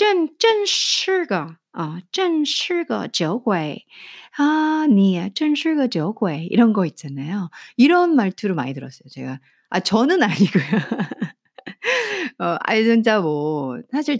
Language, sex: Korean, female